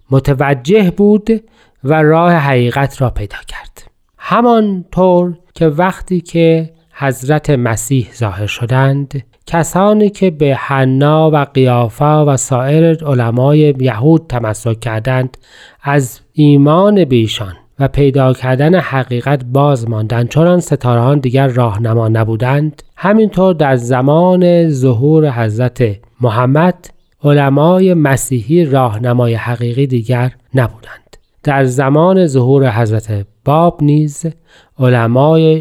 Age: 40-59